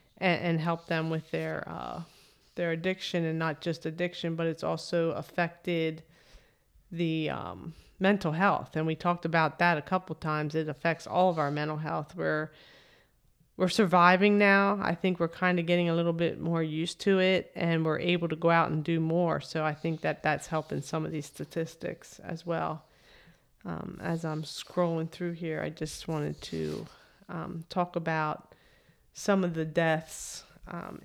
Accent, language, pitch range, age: American, English, 160-180 Hz, 40-59